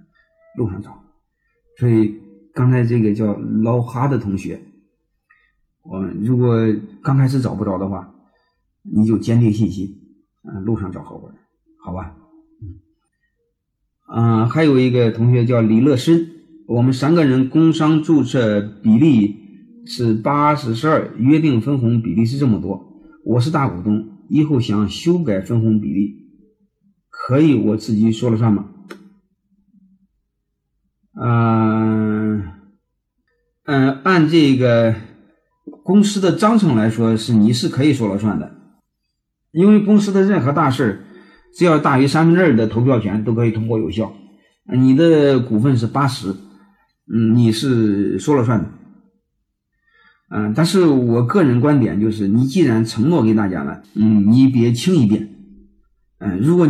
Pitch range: 110-155 Hz